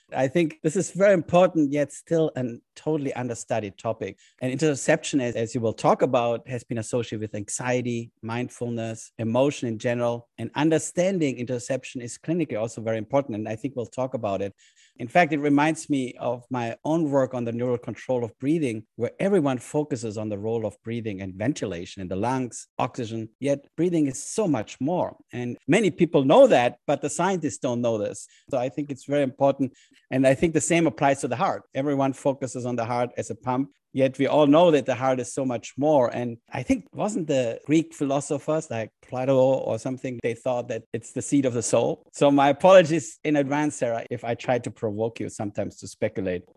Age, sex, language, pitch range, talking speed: 50-69, male, English, 115-145 Hz, 205 wpm